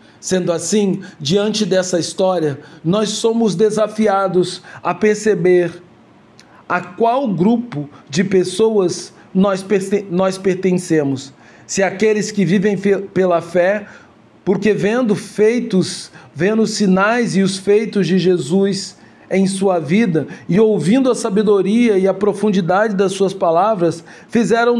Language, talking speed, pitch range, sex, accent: Portuguese, 115 wpm, 175-215 Hz, male, Brazilian